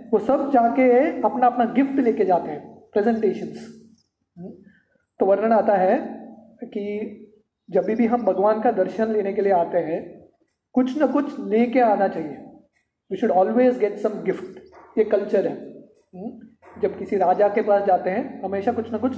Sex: male